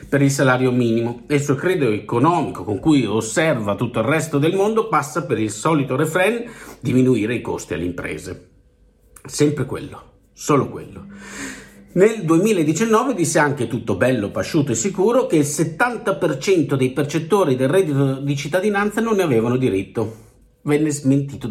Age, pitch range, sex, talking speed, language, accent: 50-69, 110-170 Hz, male, 155 wpm, Italian, native